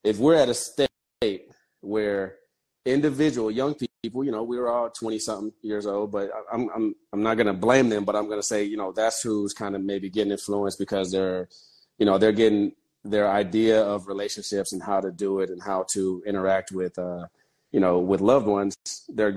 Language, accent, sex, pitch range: English, American, male, 100-115 Hz